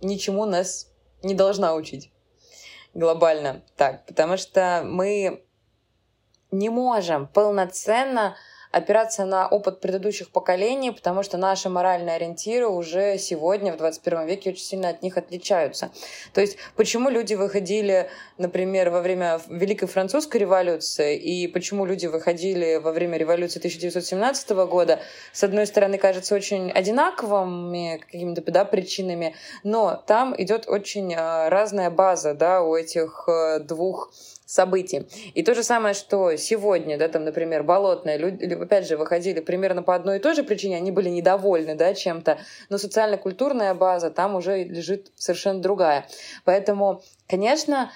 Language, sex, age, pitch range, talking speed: Russian, female, 20-39, 170-200 Hz, 135 wpm